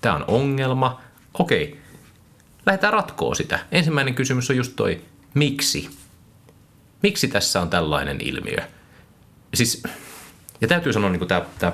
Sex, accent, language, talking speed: male, native, Finnish, 130 wpm